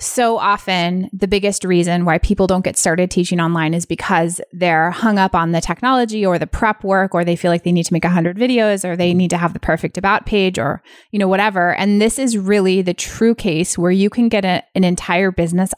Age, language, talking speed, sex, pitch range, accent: 20-39, English, 235 wpm, female, 170-205 Hz, American